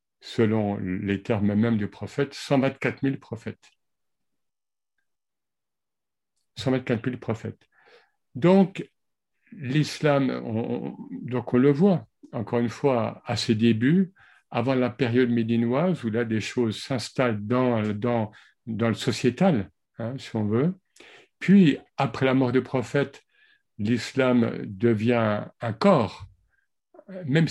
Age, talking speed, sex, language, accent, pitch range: 50-69, 120 wpm, male, French, French, 110-140 Hz